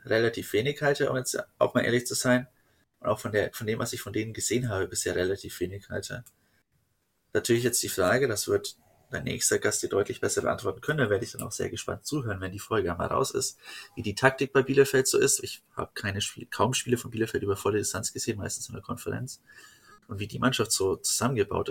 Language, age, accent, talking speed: German, 30-49, German, 230 wpm